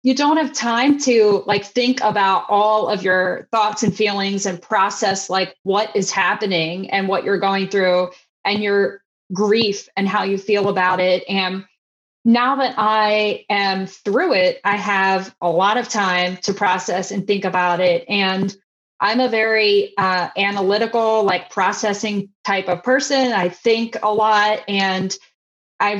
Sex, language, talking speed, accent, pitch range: female, English, 160 wpm, American, 190-220 Hz